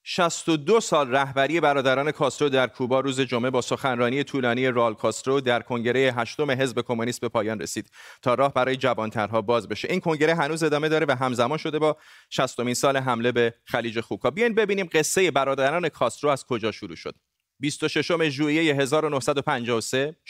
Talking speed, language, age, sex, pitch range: 170 wpm, Persian, 30-49, male, 120-150 Hz